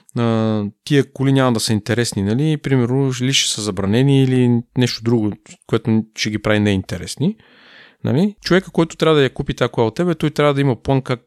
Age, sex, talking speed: 30-49, male, 190 wpm